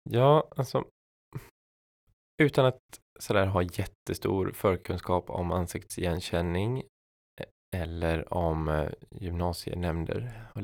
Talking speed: 85 wpm